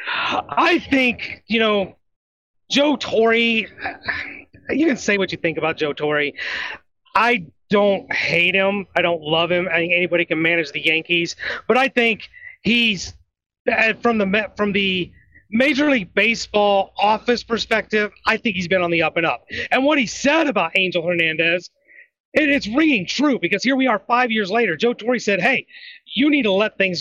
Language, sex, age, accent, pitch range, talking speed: English, male, 30-49, American, 185-255 Hz, 180 wpm